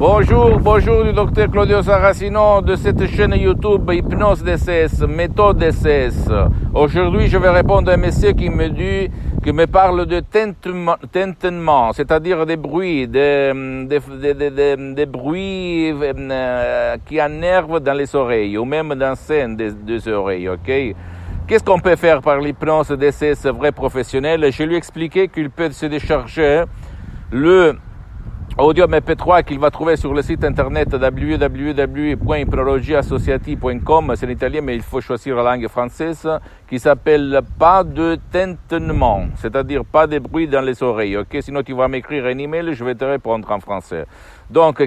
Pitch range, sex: 125-160 Hz, male